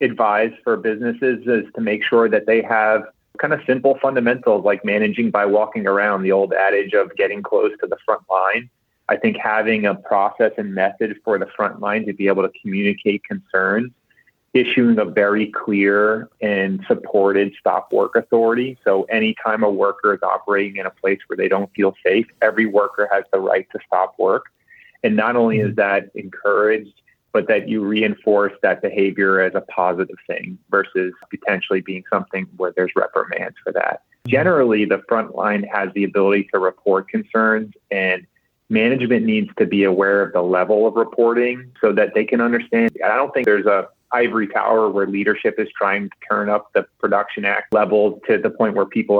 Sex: male